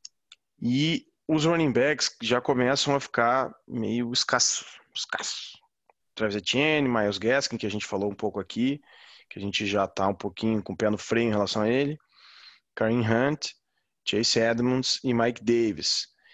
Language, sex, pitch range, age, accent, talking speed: Portuguese, male, 105-125 Hz, 20-39, Brazilian, 165 wpm